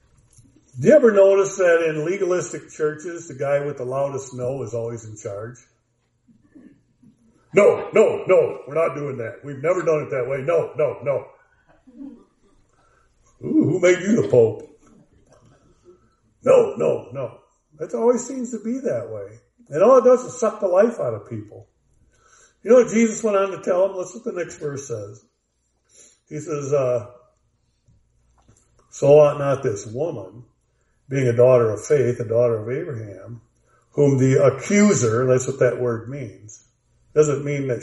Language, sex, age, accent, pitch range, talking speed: English, male, 50-69, American, 125-190 Hz, 165 wpm